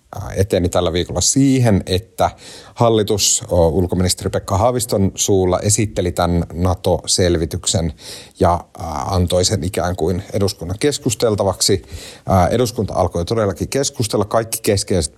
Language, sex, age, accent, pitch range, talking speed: Finnish, male, 30-49, native, 90-105 Hz, 105 wpm